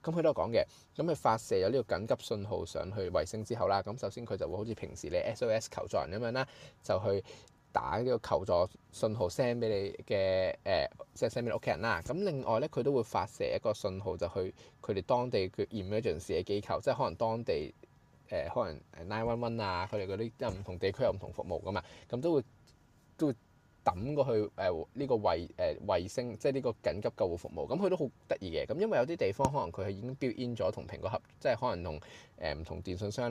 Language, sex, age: Chinese, male, 20-39